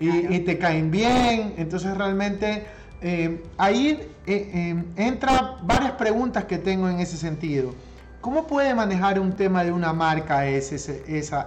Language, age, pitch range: Spanish, 30-49, 165-225 Hz